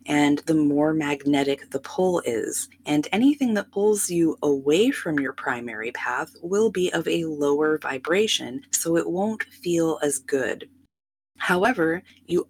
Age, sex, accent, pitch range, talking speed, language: 20-39, female, American, 145-210 Hz, 150 wpm, English